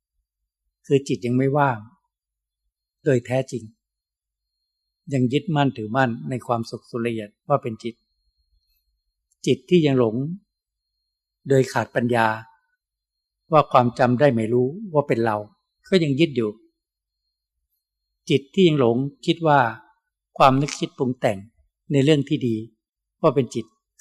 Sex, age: male, 60-79